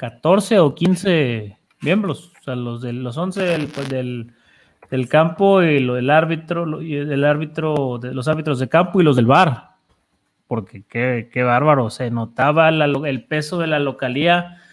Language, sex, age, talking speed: Spanish, male, 30-49, 180 wpm